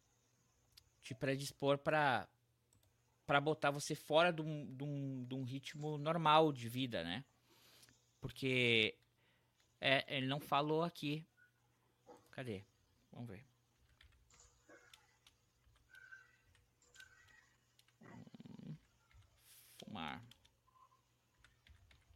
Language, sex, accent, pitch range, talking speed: Portuguese, male, Brazilian, 120-150 Hz, 65 wpm